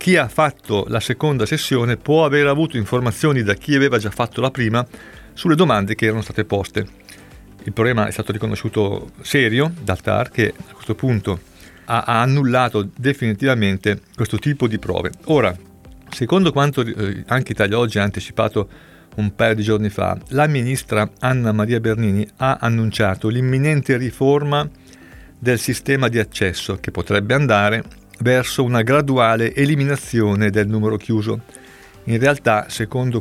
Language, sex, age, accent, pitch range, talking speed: Italian, male, 40-59, native, 105-130 Hz, 145 wpm